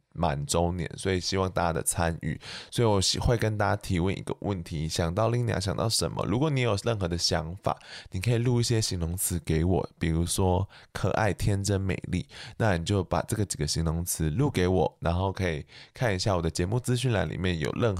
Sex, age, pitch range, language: male, 20-39, 85-120 Hz, Chinese